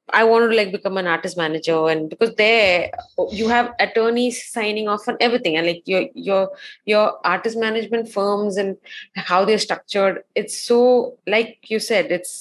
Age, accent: 20-39, Indian